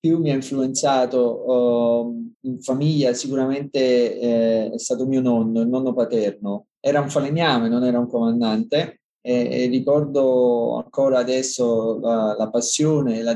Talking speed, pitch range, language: 150 wpm, 120-145 Hz, Italian